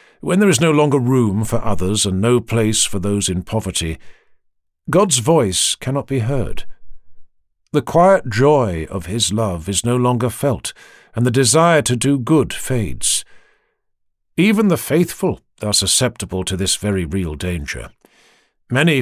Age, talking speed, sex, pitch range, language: 50-69, 150 wpm, male, 100-155 Hz, English